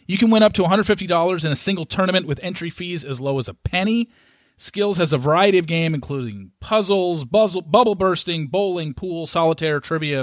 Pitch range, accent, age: 135-175 Hz, American, 40-59